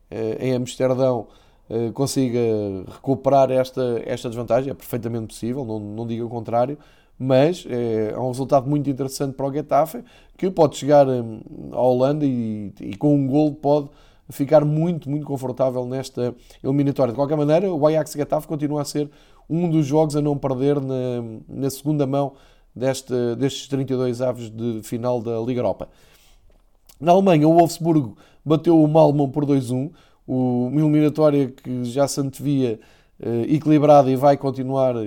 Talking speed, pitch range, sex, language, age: 155 wpm, 120-145 Hz, male, Portuguese, 20-39